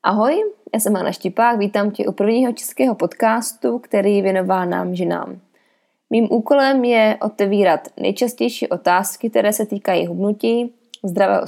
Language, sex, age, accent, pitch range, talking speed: Czech, female, 20-39, native, 195-240 Hz, 135 wpm